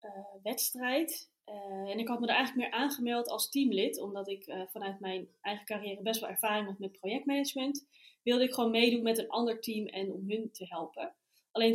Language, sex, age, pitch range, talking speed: Dutch, female, 20-39, 200-245 Hz, 205 wpm